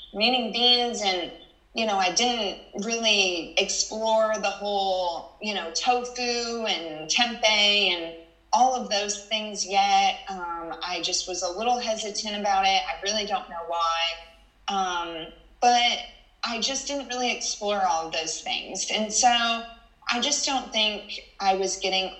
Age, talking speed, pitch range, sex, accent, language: 30-49, 150 wpm, 185-245 Hz, female, American, English